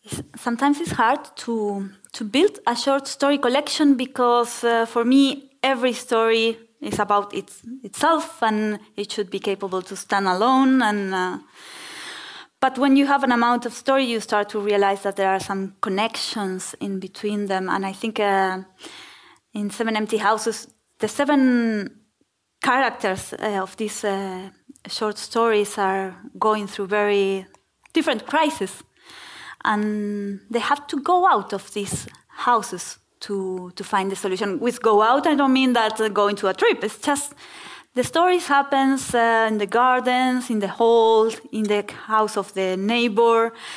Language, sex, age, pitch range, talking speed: English, female, 20-39, 200-255 Hz, 160 wpm